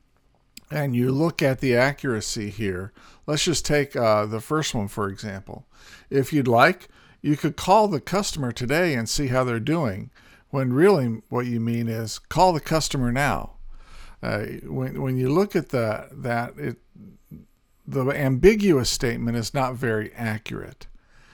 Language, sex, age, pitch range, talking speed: English, male, 50-69, 115-150 Hz, 155 wpm